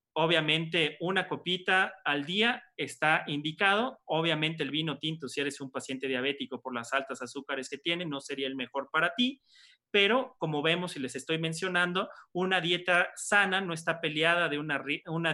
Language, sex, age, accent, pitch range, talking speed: Spanish, male, 30-49, Mexican, 135-165 Hz, 170 wpm